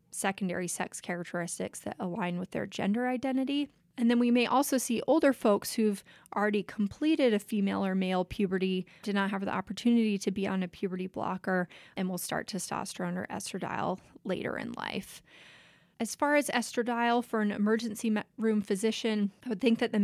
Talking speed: 175 wpm